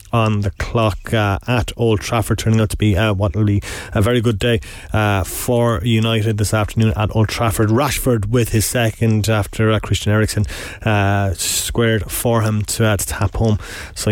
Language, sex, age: English, male, 30-49